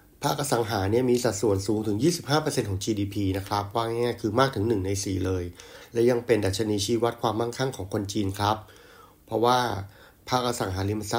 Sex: male